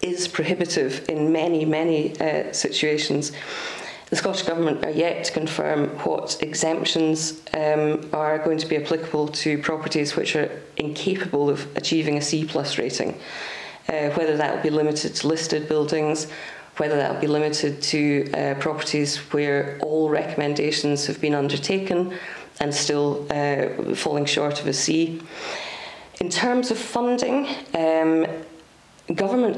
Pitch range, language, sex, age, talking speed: 145-160 Hz, English, female, 30-49, 140 wpm